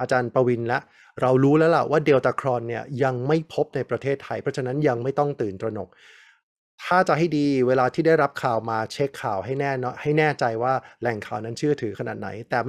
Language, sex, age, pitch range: Thai, male, 20-39, 115-145 Hz